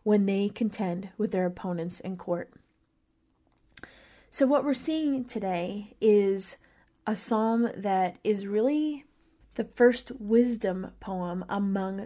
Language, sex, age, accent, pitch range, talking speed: English, female, 20-39, American, 185-220 Hz, 120 wpm